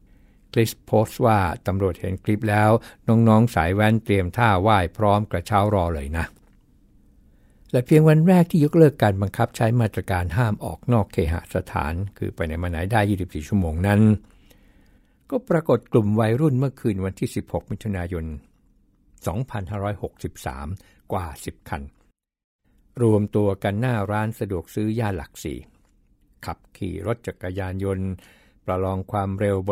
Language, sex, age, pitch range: Thai, male, 60-79, 95-115 Hz